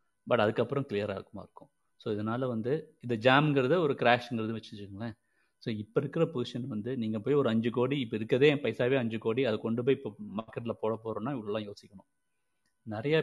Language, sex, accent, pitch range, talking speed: Tamil, male, native, 110-130 Hz, 175 wpm